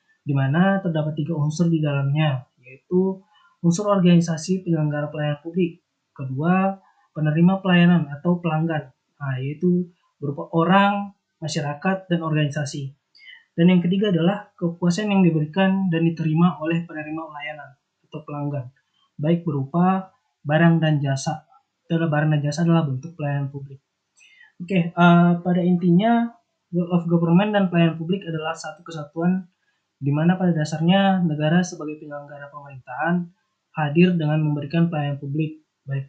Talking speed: 130 wpm